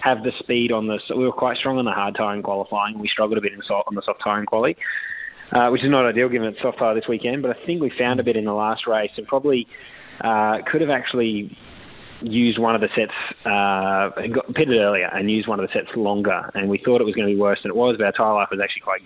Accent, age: Australian, 20-39